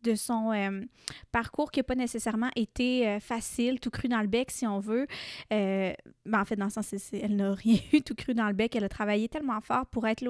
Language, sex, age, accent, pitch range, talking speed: French, female, 20-39, Canadian, 215-250 Hz, 245 wpm